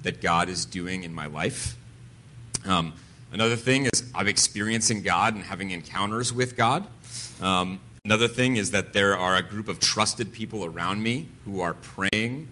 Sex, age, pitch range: male, 30-49, 95-120 Hz